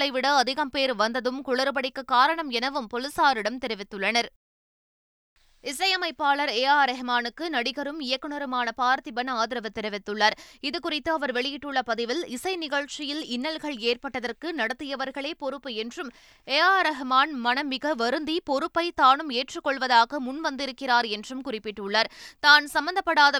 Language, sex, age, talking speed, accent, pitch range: Tamil, female, 20-39, 105 wpm, native, 245-295 Hz